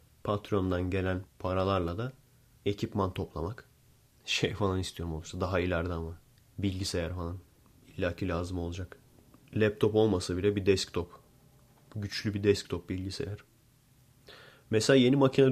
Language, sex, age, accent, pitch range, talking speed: Turkish, male, 30-49, native, 95-115 Hz, 115 wpm